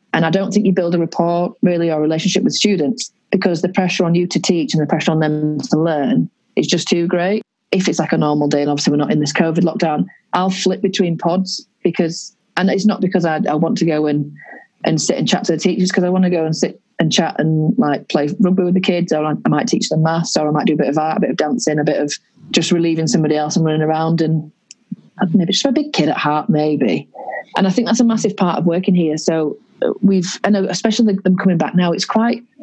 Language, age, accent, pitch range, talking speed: English, 30-49, British, 165-200 Hz, 265 wpm